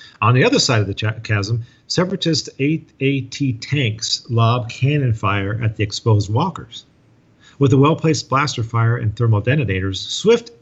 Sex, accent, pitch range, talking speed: male, American, 115-145 Hz, 145 wpm